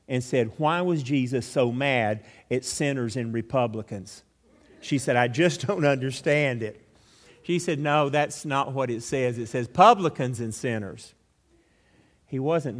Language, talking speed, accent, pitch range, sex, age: English, 155 wpm, American, 115-150 Hz, male, 50-69